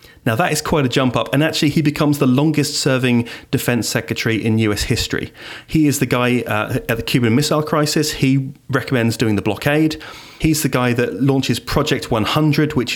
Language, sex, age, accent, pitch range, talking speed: English, male, 30-49, British, 115-145 Hz, 195 wpm